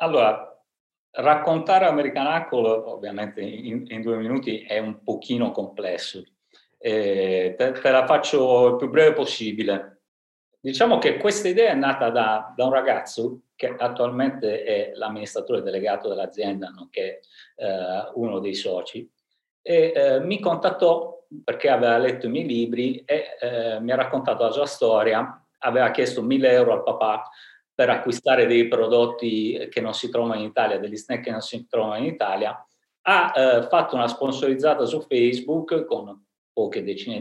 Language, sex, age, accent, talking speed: Italian, male, 50-69, native, 150 wpm